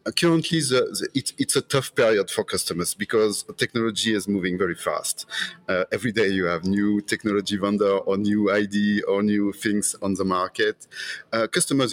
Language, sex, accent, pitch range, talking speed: English, male, French, 95-130 Hz, 175 wpm